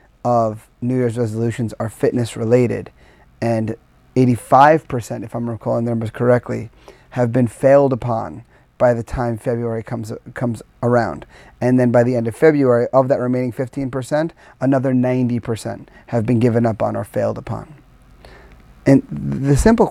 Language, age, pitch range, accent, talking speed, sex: English, 30-49, 115-135 Hz, American, 150 wpm, male